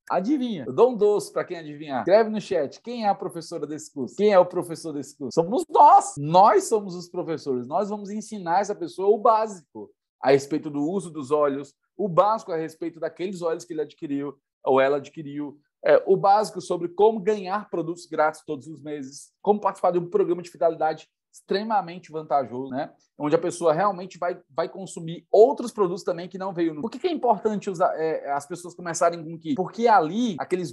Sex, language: male, Portuguese